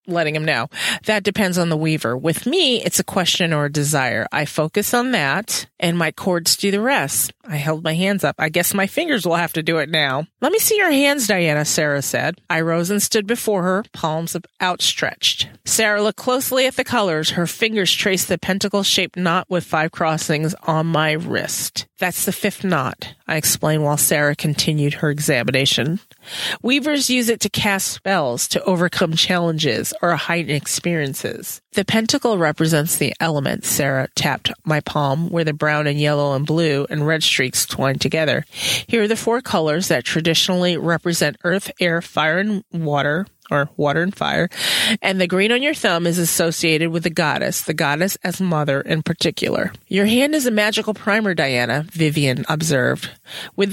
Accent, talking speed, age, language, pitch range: American, 185 wpm, 40-59, English, 155-200 Hz